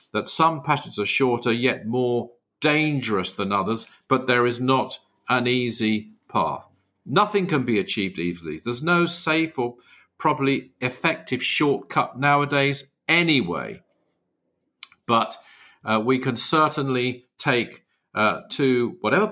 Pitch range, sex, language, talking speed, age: 120-150 Hz, male, English, 125 wpm, 50-69